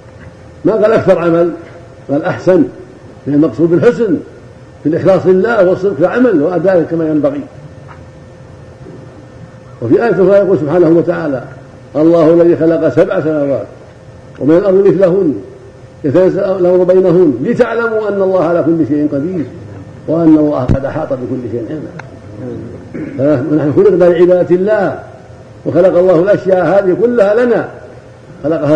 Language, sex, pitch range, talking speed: Arabic, male, 130-185 Hz, 125 wpm